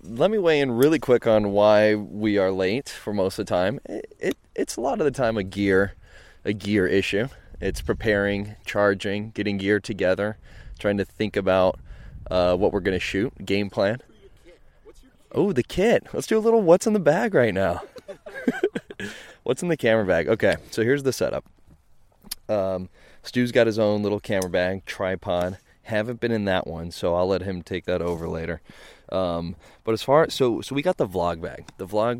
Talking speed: 195 wpm